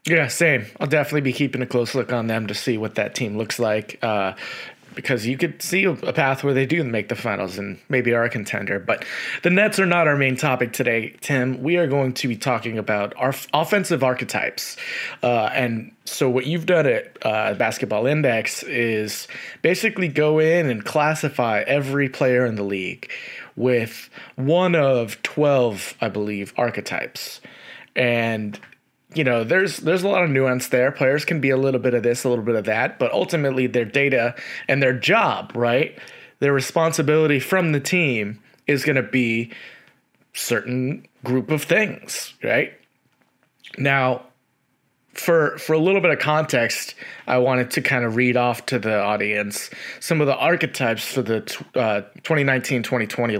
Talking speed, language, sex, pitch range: 175 wpm, English, male, 120-150 Hz